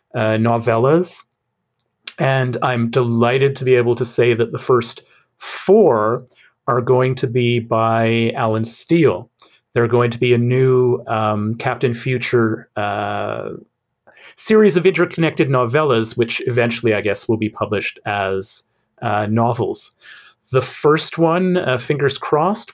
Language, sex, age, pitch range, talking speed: English, male, 30-49, 110-135 Hz, 135 wpm